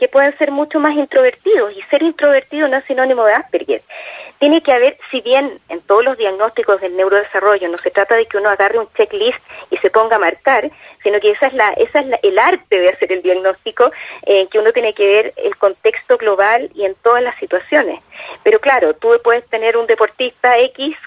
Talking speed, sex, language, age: 215 wpm, female, Spanish, 30-49